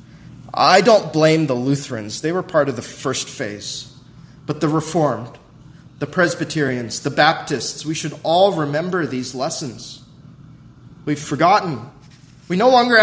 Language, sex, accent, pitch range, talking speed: English, male, American, 150-210 Hz, 140 wpm